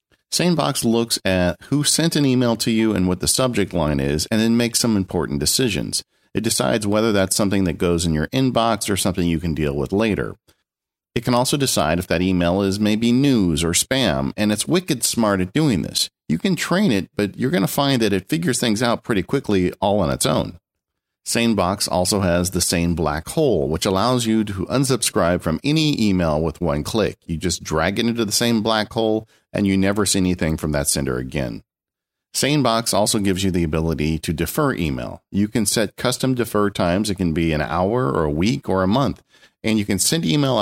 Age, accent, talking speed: 40-59, American, 215 wpm